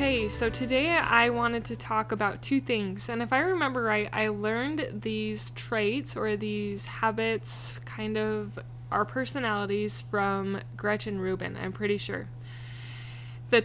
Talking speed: 145 wpm